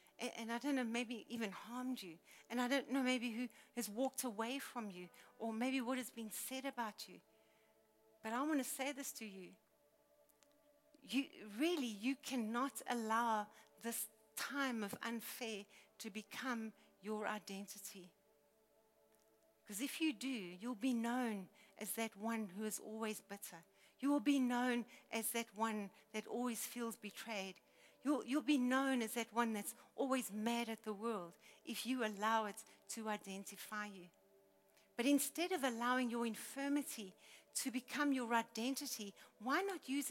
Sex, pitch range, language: female, 220-270 Hz, English